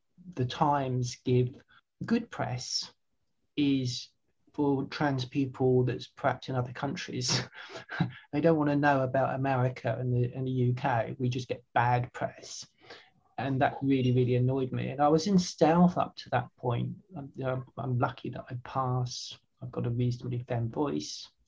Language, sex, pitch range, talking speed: English, male, 125-150 Hz, 160 wpm